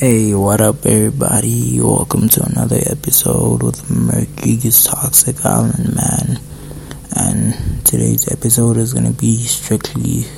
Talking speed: 125 wpm